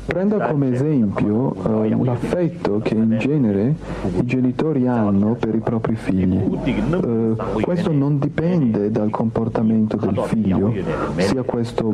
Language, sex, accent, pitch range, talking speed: Italian, male, native, 110-135 Hz, 125 wpm